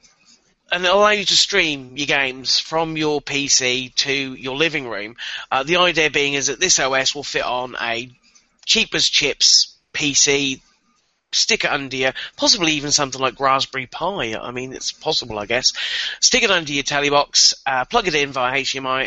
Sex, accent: male, British